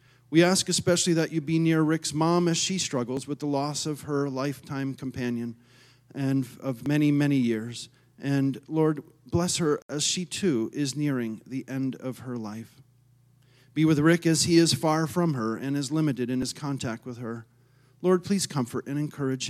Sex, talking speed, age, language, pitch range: male, 185 wpm, 40-59, English, 125-155 Hz